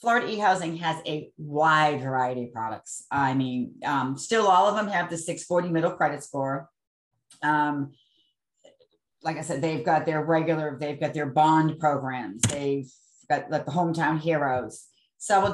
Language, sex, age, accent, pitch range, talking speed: English, female, 40-59, American, 145-175 Hz, 160 wpm